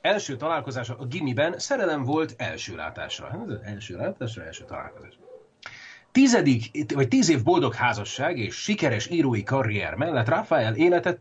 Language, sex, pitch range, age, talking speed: Hungarian, male, 120-175 Hz, 30-49, 130 wpm